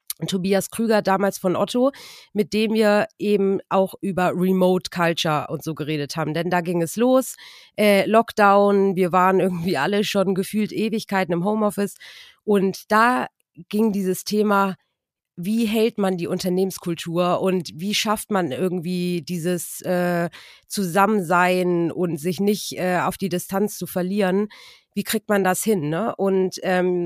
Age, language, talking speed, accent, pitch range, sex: 30-49, German, 150 wpm, German, 180-210 Hz, female